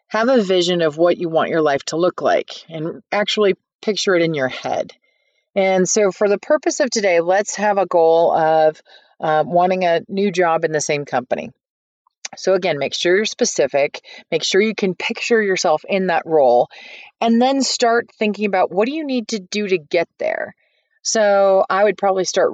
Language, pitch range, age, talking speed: English, 165-210 Hz, 30-49, 195 wpm